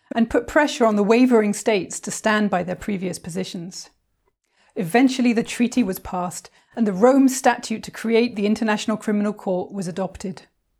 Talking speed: 165 wpm